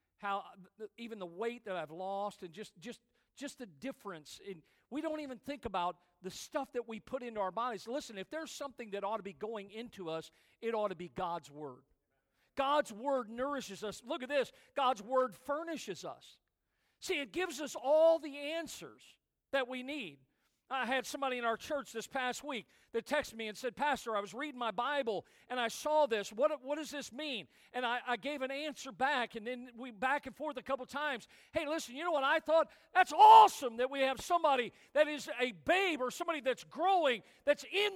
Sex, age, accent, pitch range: male, 50-69, American, 225-305 Hz